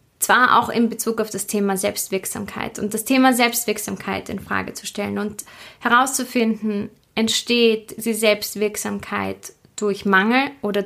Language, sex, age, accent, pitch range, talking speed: German, female, 20-39, German, 195-225 Hz, 135 wpm